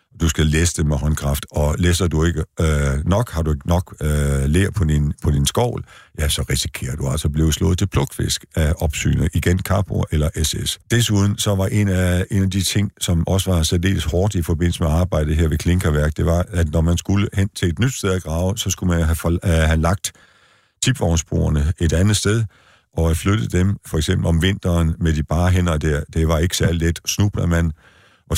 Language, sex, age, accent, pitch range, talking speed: Danish, male, 50-69, native, 80-95 Hz, 220 wpm